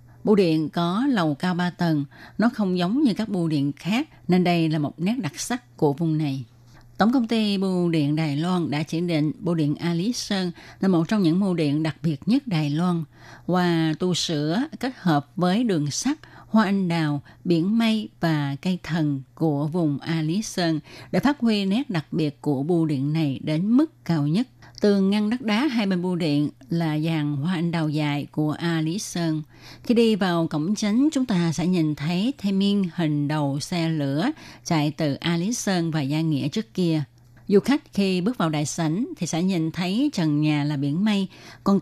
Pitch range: 150-195 Hz